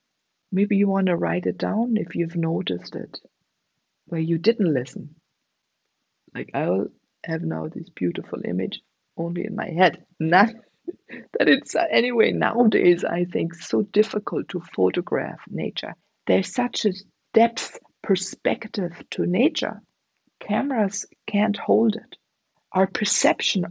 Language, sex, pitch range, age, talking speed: English, female, 170-205 Hz, 50-69, 130 wpm